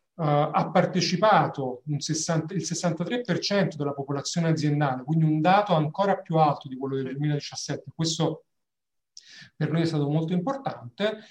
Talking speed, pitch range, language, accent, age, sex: 145 wpm, 155-190 Hz, Italian, native, 40-59, male